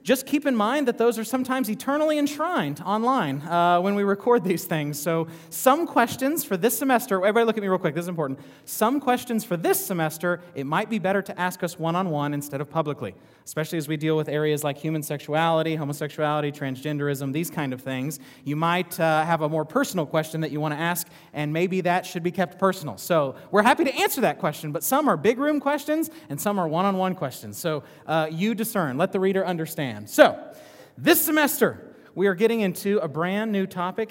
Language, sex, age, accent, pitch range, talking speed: English, male, 30-49, American, 160-215 Hz, 210 wpm